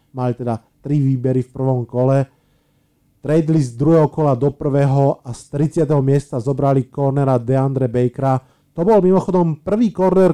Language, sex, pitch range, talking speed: Slovak, male, 130-155 Hz, 150 wpm